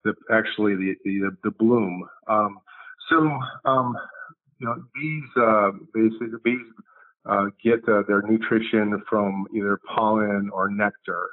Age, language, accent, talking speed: 50-69, English, American, 140 wpm